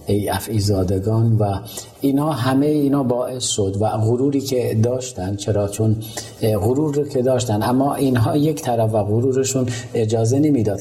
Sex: male